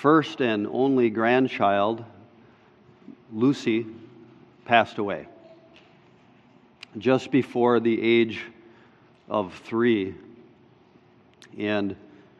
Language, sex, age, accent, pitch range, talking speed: English, male, 50-69, American, 115-130 Hz, 70 wpm